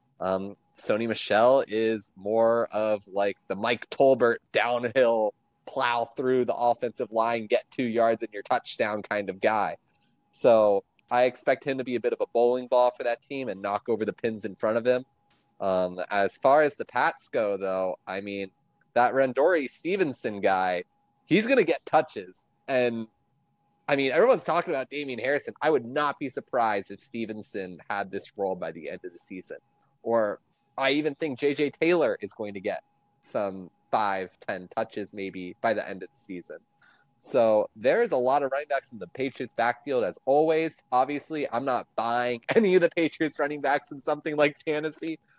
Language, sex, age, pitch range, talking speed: English, male, 20-39, 110-145 Hz, 185 wpm